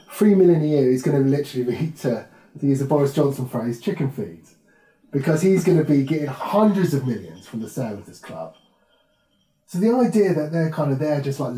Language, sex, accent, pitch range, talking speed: English, male, British, 130-170 Hz, 225 wpm